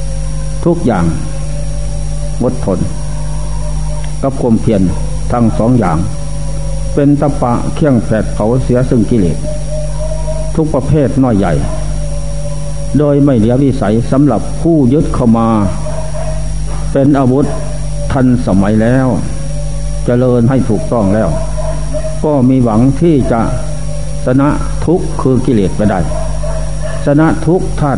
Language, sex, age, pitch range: Thai, male, 60-79, 125-150 Hz